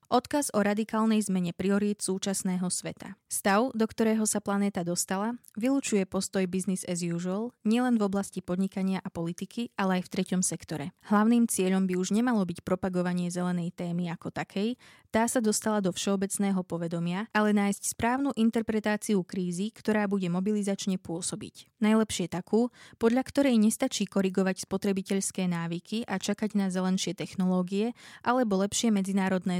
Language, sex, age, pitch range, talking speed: Slovak, female, 20-39, 185-220 Hz, 145 wpm